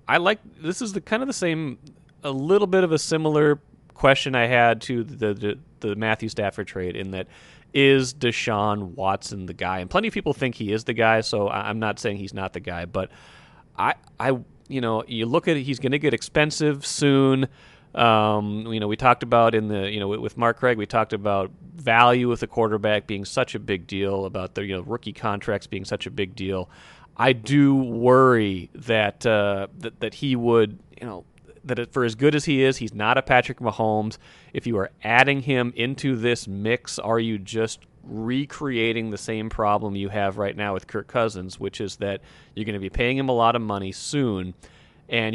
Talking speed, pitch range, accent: 210 wpm, 100-130 Hz, American